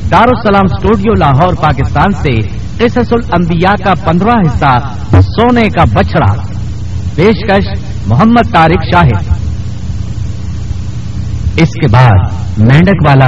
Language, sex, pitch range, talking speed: Urdu, male, 100-155 Hz, 105 wpm